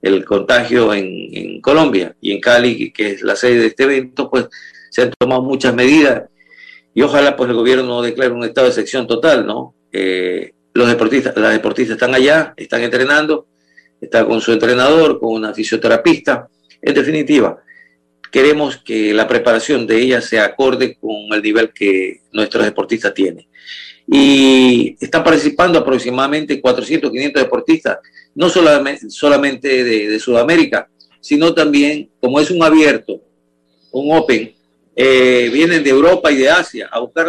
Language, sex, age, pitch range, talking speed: Spanish, male, 50-69, 115-155 Hz, 155 wpm